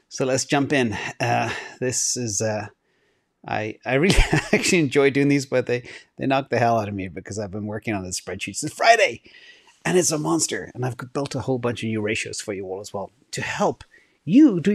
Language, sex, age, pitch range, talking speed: English, male, 30-49, 115-155 Hz, 225 wpm